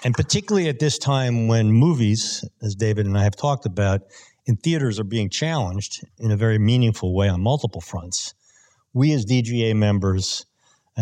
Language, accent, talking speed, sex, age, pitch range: English, American, 170 wpm, male, 50-69, 100-125 Hz